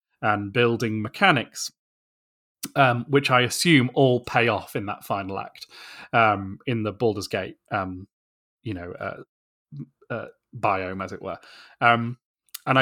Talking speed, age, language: 140 wpm, 30-49, English